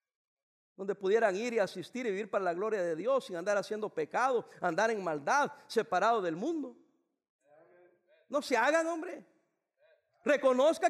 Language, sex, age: English, male, 50-69